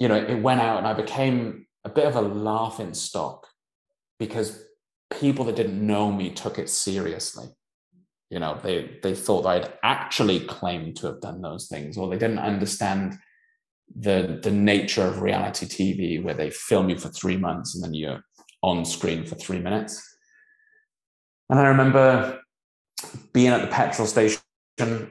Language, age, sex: English, 30-49, male